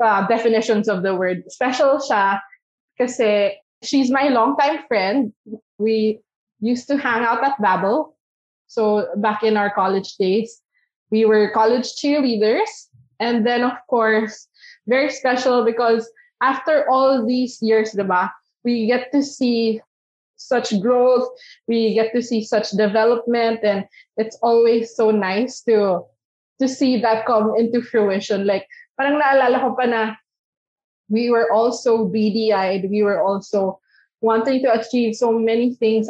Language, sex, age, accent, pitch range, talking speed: English, female, 20-39, Filipino, 215-250 Hz, 135 wpm